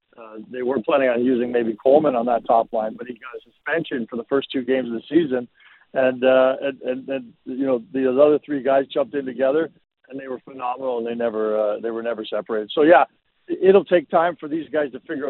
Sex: male